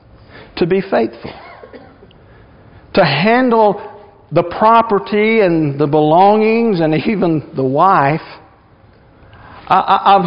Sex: male